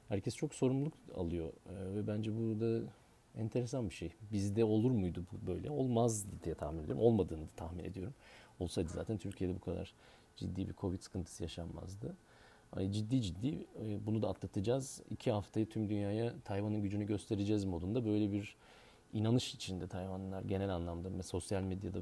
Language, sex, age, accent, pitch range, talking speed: Turkish, male, 40-59, native, 95-115 Hz, 155 wpm